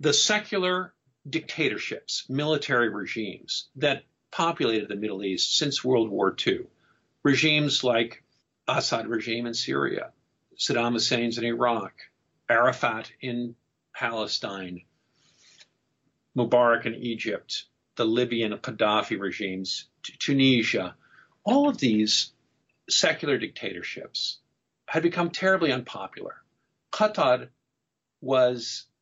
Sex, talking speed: male, 95 wpm